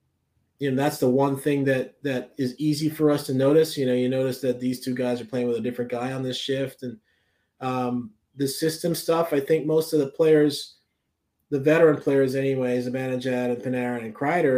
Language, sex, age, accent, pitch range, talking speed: English, male, 30-49, American, 125-155 Hz, 220 wpm